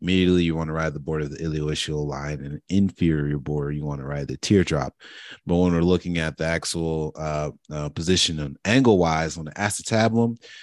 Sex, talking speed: male, 205 wpm